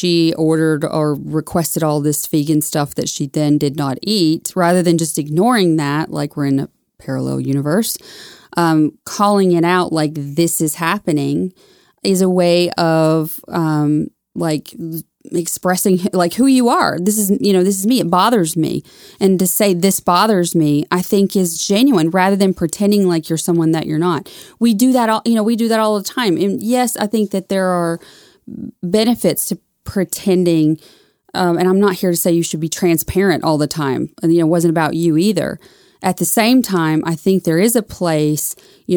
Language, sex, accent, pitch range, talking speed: English, female, American, 160-195 Hz, 195 wpm